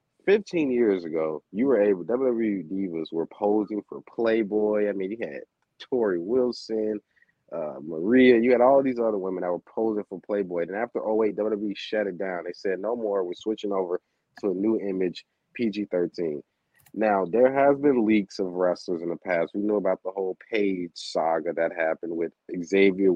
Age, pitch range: 30-49, 90-110 Hz